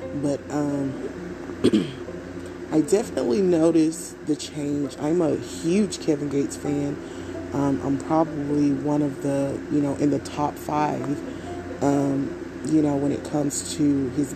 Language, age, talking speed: English, 30-49, 140 wpm